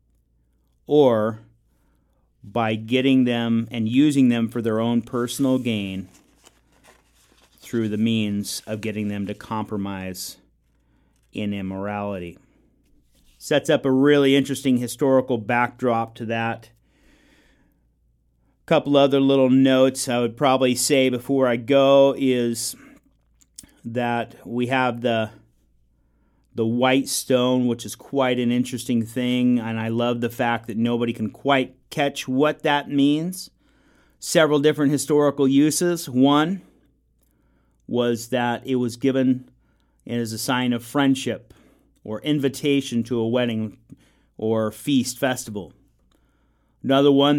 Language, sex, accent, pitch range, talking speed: English, male, American, 110-135 Hz, 120 wpm